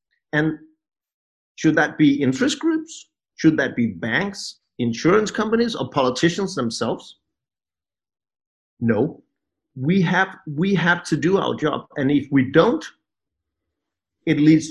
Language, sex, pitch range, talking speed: English, male, 135-190 Hz, 120 wpm